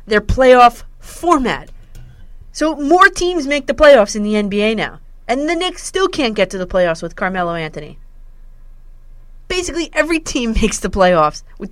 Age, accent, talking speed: 30-49, American, 165 wpm